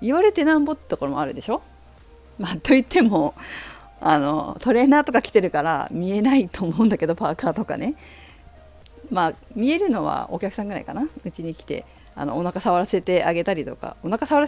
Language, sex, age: Japanese, female, 40-59